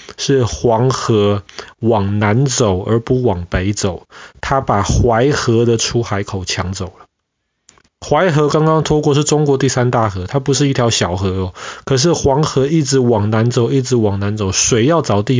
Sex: male